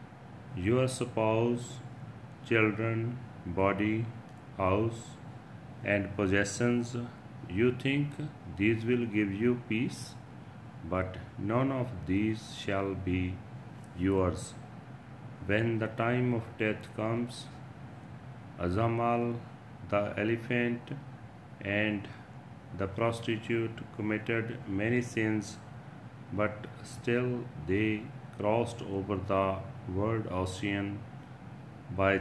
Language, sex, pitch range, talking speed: Punjabi, male, 100-125 Hz, 85 wpm